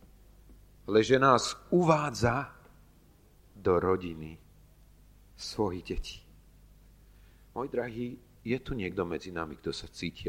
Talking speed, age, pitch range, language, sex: 100 wpm, 40-59, 85-105 Hz, Slovak, male